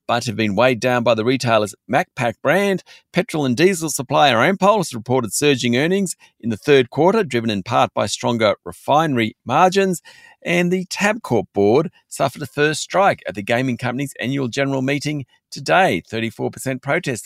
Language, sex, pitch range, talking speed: English, male, 115-160 Hz, 165 wpm